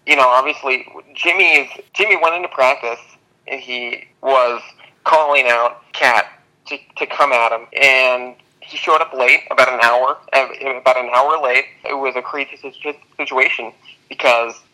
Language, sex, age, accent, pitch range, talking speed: English, male, 20-39, American, 120-140 Hz, 155 wpm